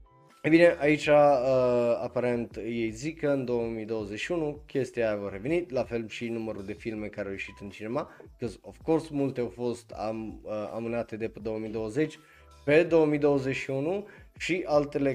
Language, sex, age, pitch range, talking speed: Romanian, male, 20-39, 110-145 Hz, 160 wpm